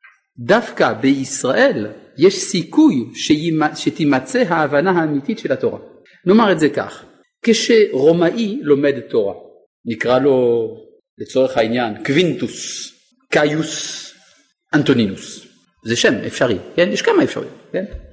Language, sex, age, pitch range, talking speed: Hebrew, male, 50-69, 155-245 Hz, 105 wpm